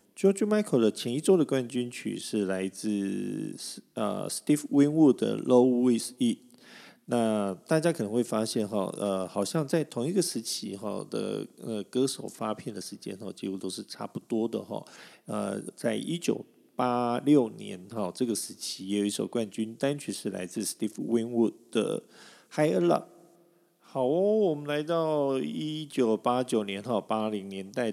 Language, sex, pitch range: Chinese, male, 100-140 Hz